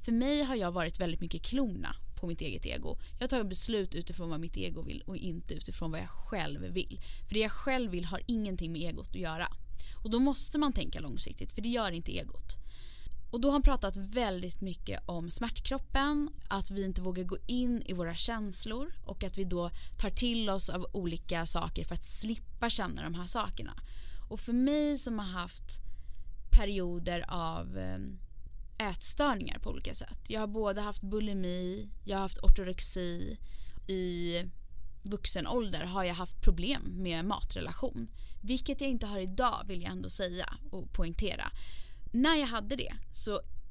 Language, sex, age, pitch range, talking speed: Swedish, female, 10-29, 175-235 Hz, 180 wpm